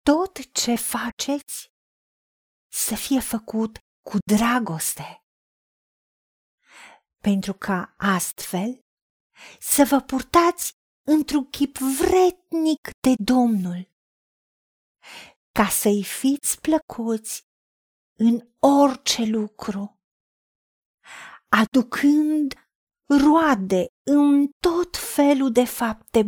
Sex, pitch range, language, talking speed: female, 210-285 Hz, Romanian, 75 wpm